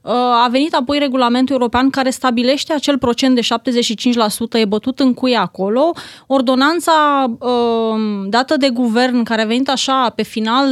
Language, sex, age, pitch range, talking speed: Romanian, female, 30-49, 230-280 Hz, 150 wpm